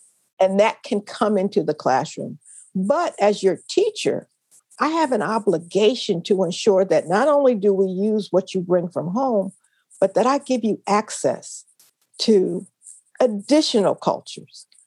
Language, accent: English, American